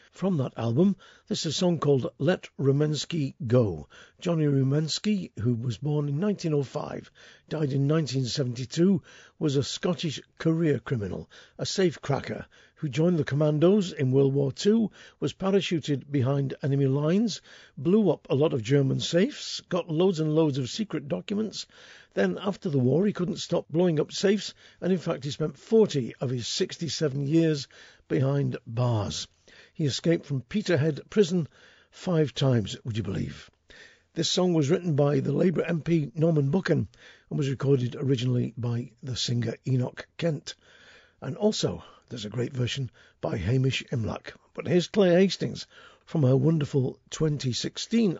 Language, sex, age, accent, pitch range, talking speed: English, male, 50-69, British, 130-175 Hz, 150 wpm